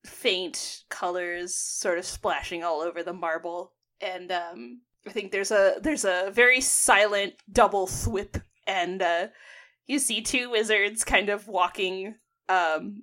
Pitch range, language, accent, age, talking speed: 180-250 Hz, English, American, 20-39, 145 wpm